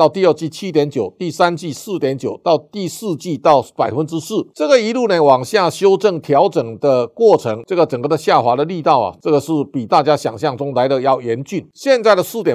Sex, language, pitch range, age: male, Chinese, 135-170 Hz, 50-69